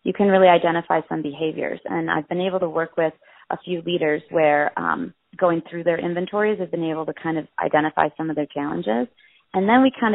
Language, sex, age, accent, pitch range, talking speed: English, female, 30-49, American, 155-185 Hz, 225 wpm